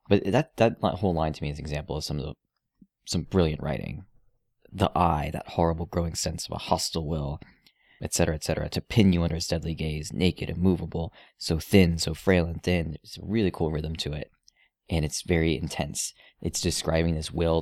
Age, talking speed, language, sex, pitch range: 20-39, 210 wpm, English, male, 80-90 Hz